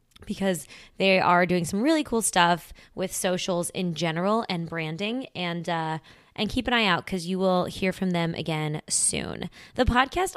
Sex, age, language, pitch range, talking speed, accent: female, 20-39, English, 170-220 Hz, 180 wpm, American